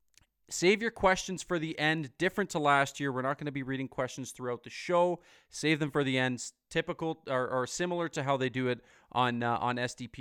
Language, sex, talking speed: English, male, 225 wpm